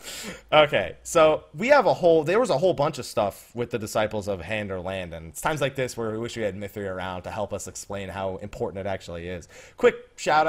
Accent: American